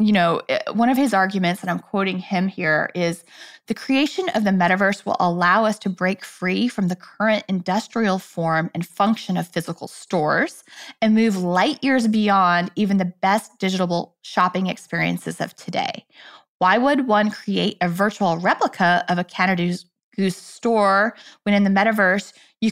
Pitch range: 180-225 Hz